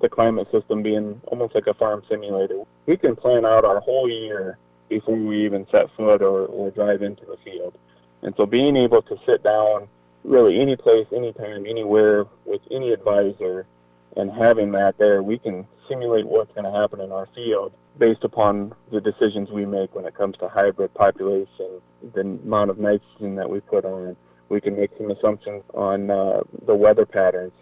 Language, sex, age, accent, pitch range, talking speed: English, male, 20-39, American, 95-115 Hz, 185 wpm